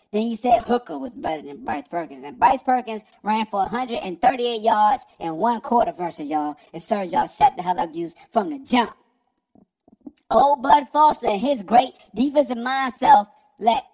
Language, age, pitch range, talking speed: English, 20-39, 225-310 Hz, 180 wpm